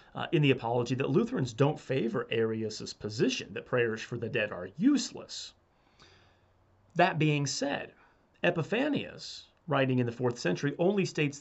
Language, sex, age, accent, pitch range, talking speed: English, male, 30-49, American, 120-155 Hz, 145 wpm